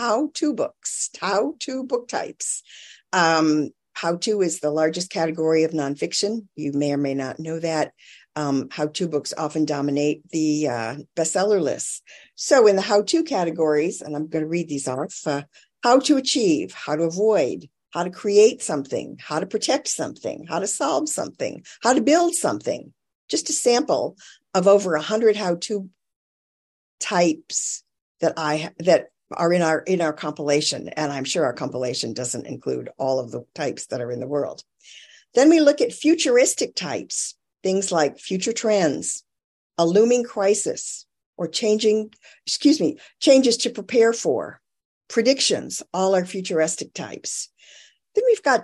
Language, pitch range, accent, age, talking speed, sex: English, 150-230 Hz, American, 50-69, 155 wpm, female